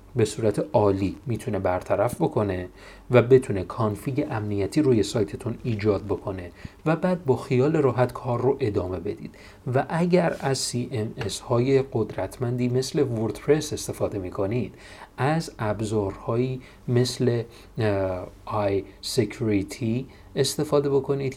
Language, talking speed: Persian, 110 wpm